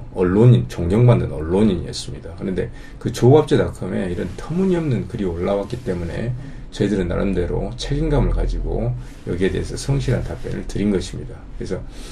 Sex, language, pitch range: male, Korean, 100-140 Hz